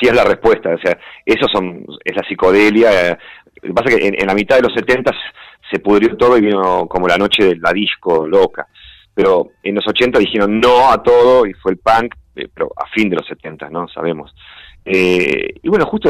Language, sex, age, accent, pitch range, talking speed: Spanish, male, 40-59, Argentinian, 90-125 Hz, 225 wpm